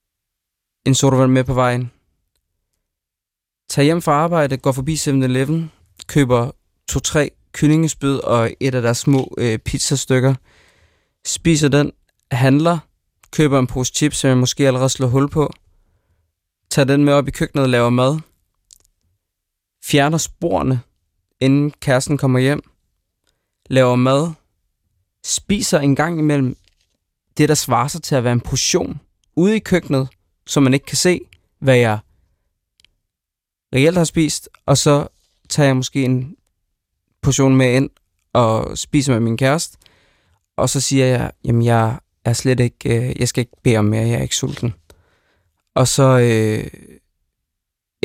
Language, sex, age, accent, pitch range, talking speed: Danish, male, 20-39, native, 95-145 Hz, 140 wpm